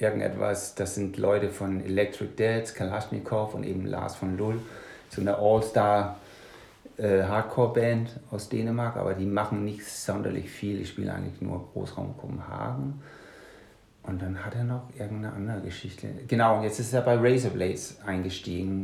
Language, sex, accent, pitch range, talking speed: German, male, German, 95-115 Hz, 150 wpm